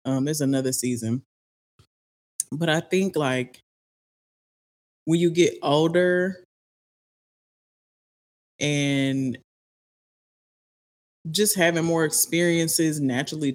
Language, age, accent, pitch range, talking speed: English, 20-39, American, 130-160 Hz, 80 wpm